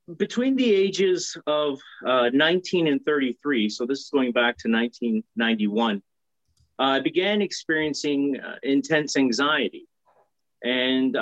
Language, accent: English, American